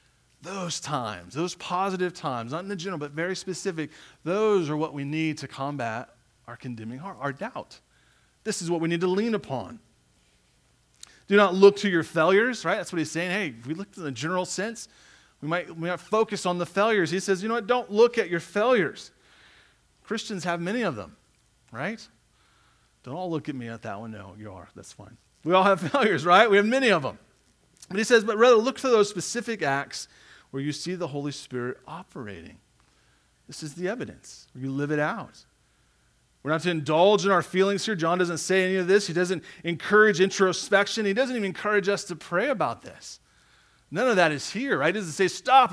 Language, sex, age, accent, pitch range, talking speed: English, male, 30-49, American, 155-205 Hz, 210 wpm